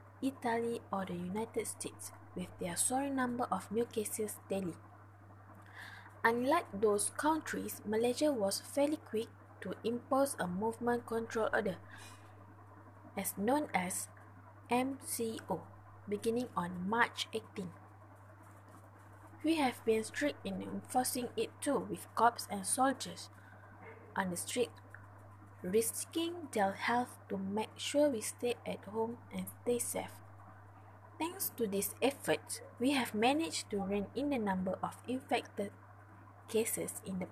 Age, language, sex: 20-39, English, female